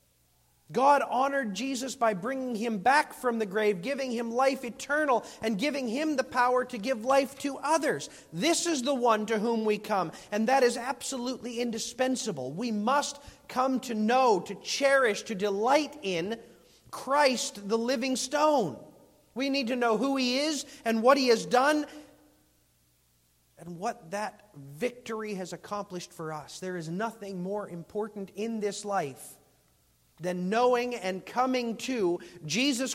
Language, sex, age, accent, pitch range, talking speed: English, male, 40-59, American, 185-260 Hz, 155 wpm